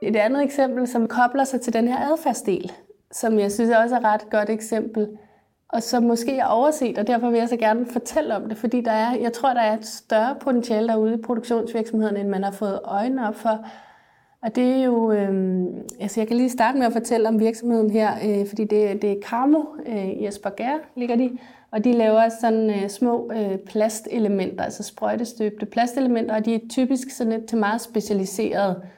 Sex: female